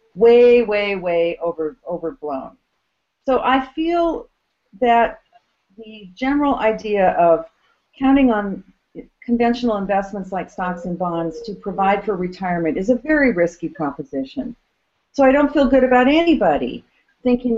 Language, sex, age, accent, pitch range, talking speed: English, female, 50-69, American, 180-250 Hz, 130 wpm